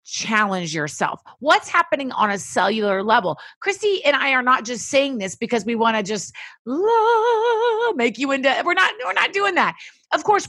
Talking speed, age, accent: 185 wpm, 30-49, American